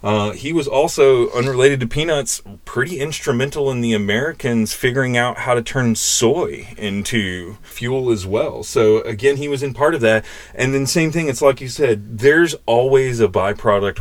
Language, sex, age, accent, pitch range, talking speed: English, male, 30-49, American, 115-145 Hz, 180 wpm